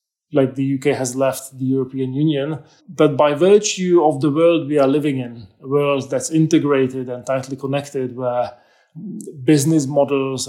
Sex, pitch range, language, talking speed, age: male, 140-160 Hz, English, 160 wpm, 20-39